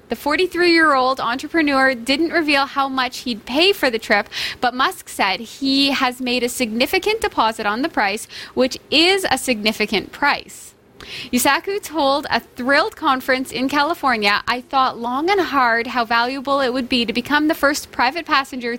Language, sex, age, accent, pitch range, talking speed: English, female, 10-29, American, 235-310 Hz, 165 wpm